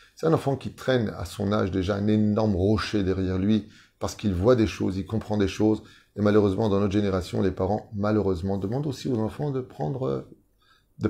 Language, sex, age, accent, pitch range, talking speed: French, male, 30-49, French, 95-120 Hz, 205 wpm